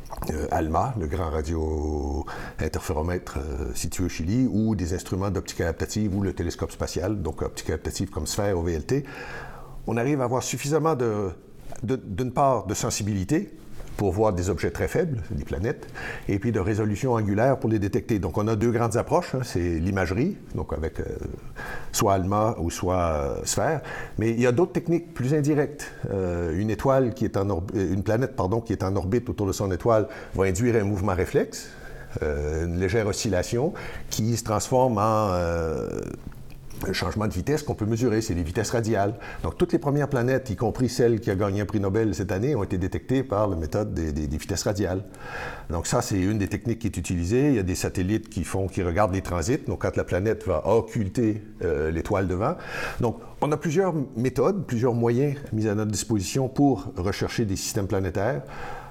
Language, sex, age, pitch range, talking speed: French, male, 60-79, 95-120 Hz, 195 wpm